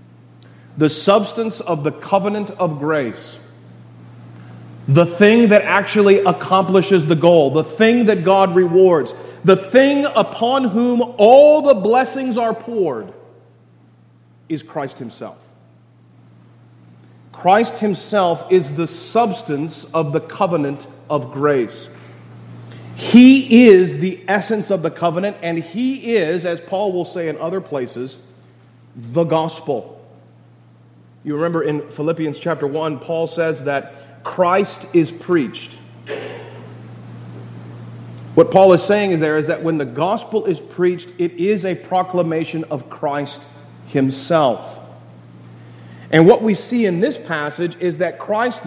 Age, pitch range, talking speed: 40-59, 125-195 Hz, 125 wpm